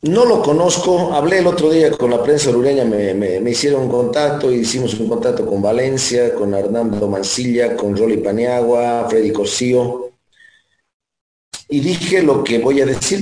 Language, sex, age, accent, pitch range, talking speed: Spanish, male, 40-59, Mexican, 120-165 Hz, 175 wpm